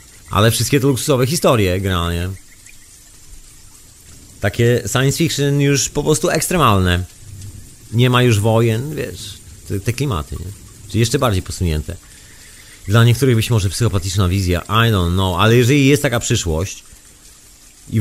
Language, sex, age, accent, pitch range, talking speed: Polish, male, 40-59, native, 100-135 Hz, 135 wpm